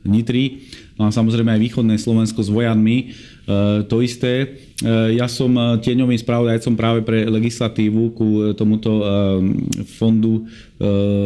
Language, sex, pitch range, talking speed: Slovak, male, 105-115 Hz, 100 wpm